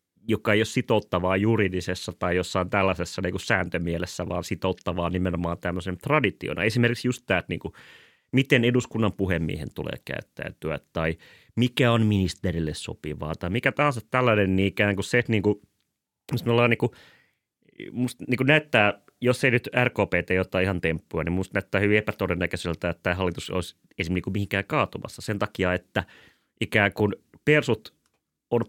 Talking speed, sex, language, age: 155 wpm, male, Finnish, 30-49